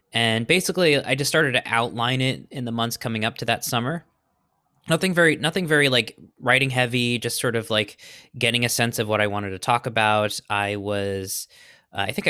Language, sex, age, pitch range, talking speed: English, male, 20-39, 105-135 Hz, 205 wpm